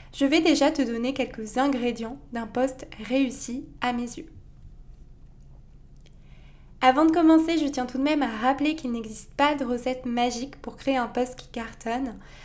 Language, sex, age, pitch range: French, female, 20-39, 235-280 Hz